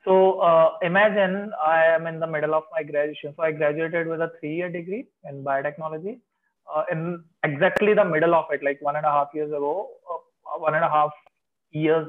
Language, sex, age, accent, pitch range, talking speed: English, male, 20-39, Indian, 145-165 Hz, 205 wpm